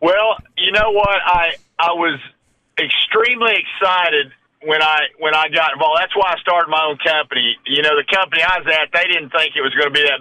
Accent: American